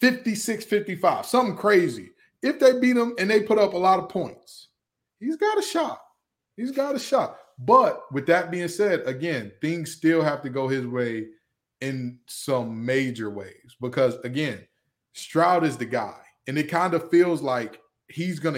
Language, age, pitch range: English, 20-39, 135-185 Hz